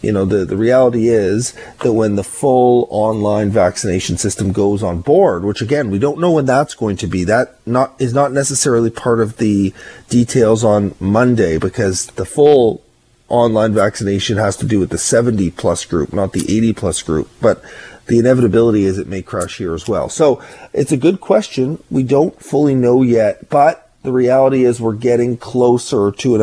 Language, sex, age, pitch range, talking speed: English, male, 30-49, 100-120 Hz, 190 wpm